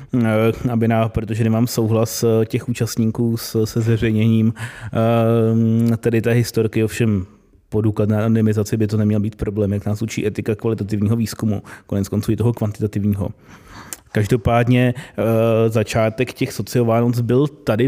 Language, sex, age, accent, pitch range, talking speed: Czech, male, 30-49, native, 110-120 Hz, 125 wpm